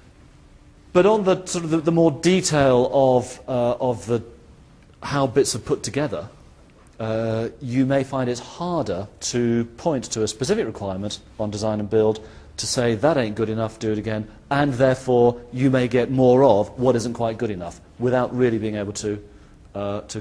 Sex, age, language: male, 40-59, English